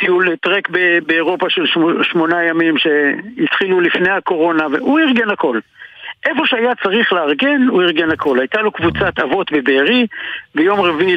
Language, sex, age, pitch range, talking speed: Hebrew, male, 60-79, 150-225 Hz, 140 wpm